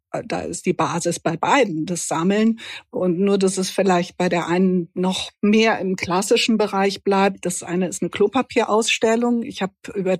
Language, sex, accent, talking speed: German, female, German, 175 wpm